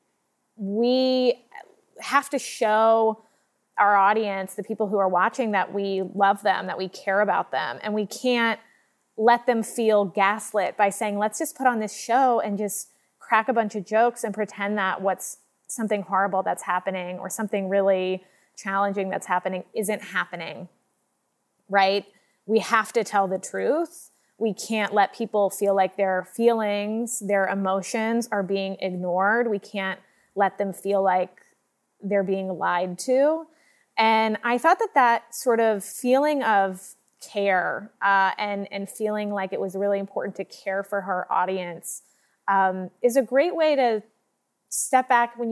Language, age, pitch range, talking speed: English, 20-39, 195-225 Hz, 160 wpm